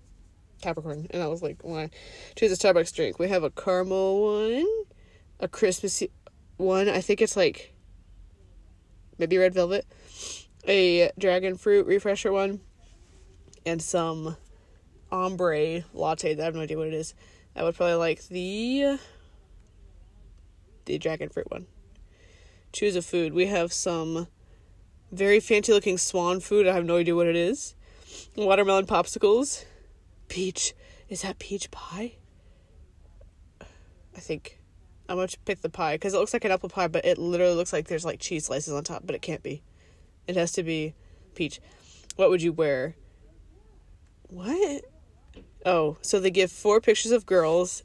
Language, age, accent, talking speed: English, 10-29, American, 155 wpm